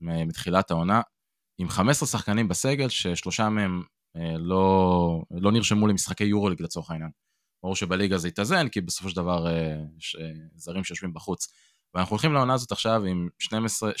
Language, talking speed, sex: Hebrew, 165 wpm, male